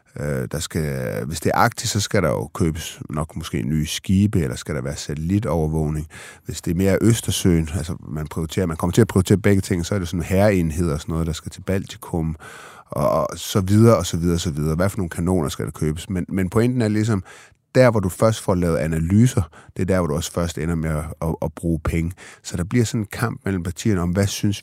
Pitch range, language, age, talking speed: 80-100 Hz, Danish, 30-49, 245 wpm